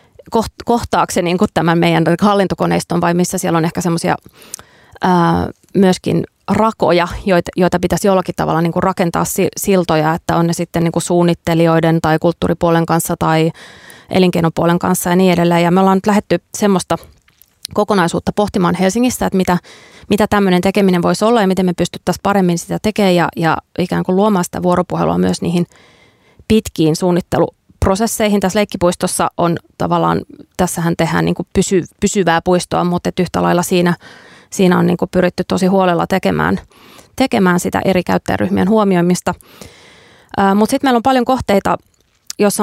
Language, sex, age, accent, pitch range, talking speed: Finnish, female, 20-39, native, 170-195 Hz, 145 wpm